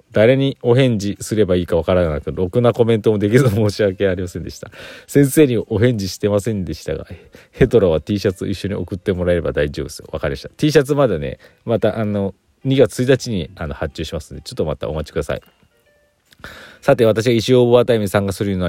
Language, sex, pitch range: Japanese, male, 85-115 Hz